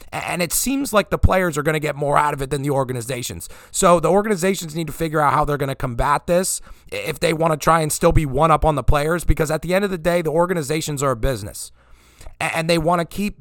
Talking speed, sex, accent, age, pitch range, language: 270 wpm, male, American, 30-49, 135-175 Hz, English